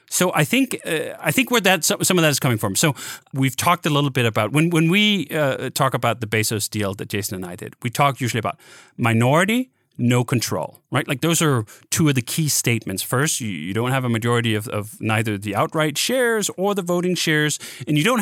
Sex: male